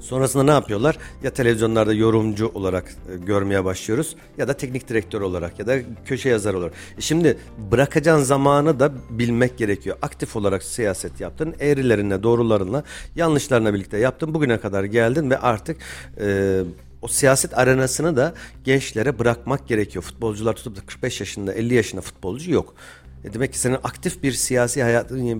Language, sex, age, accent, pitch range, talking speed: Turkish, male, 50-69, native, 110-140 Hz, 145 wpm